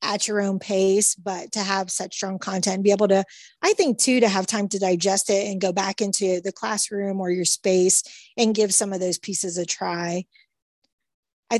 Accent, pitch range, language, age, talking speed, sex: American, 185-225 Hz, English, 30-49, 210 wpm, female